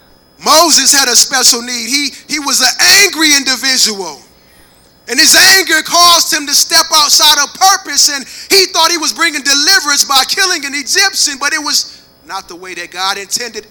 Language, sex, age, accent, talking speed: English, male, 20-39, American, 180 wpm